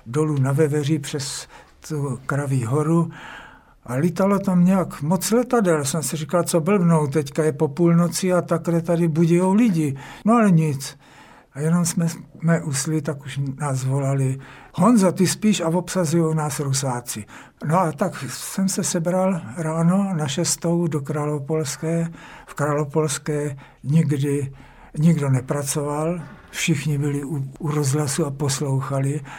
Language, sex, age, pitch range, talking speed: Czech, male, 60-79, 145-175 Hz, 140 wpm